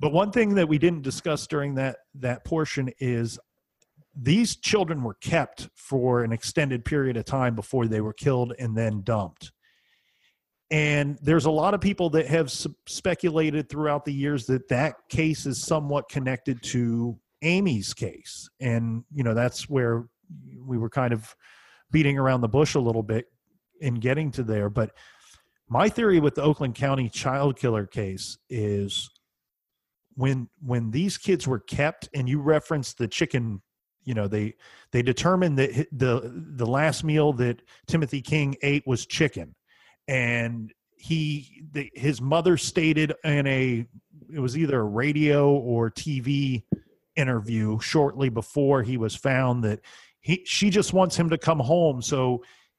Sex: male